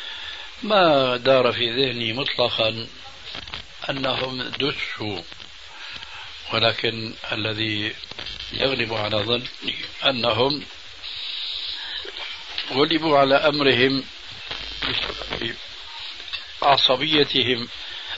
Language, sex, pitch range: Arabic, male, 105-135 Hz